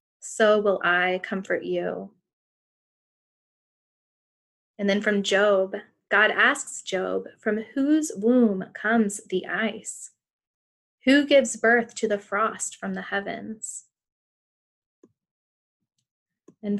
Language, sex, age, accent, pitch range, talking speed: English, female, 20-39, American, 195-230 Hz, 100 wpm